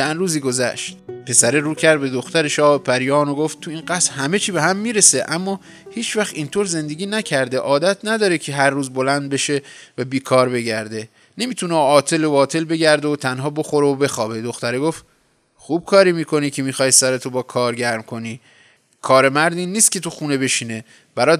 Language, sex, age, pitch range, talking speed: Persian, male, 20-39, 130-180 Hz, 180 wpm